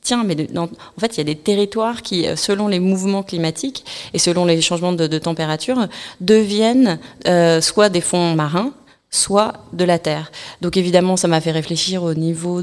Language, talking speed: French, 185 wpm